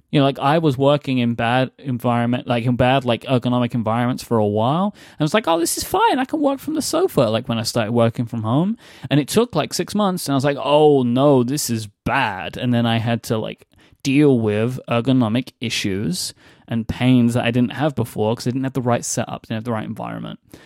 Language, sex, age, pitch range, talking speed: English, male, 10-29, 120-145 Hz, 240 wpm